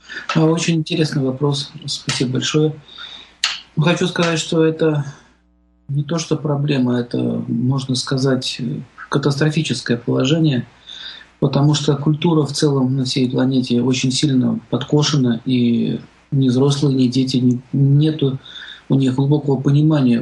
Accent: native